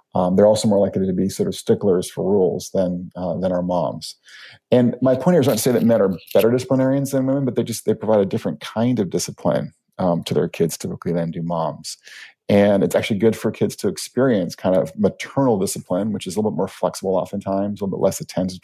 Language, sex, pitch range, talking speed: English, male, 90-115 Hz, 240 wpm